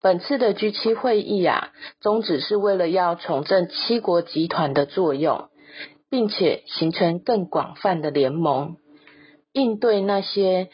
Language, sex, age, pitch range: Chinese, female, 30-49, 155-210 Hz